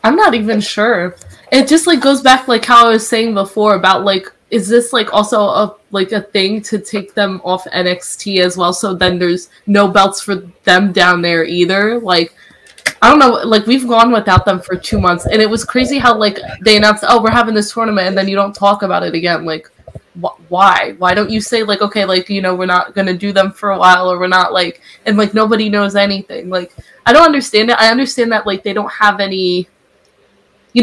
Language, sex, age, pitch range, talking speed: English, female, 20-39, 185-225 Hz, 230 wpm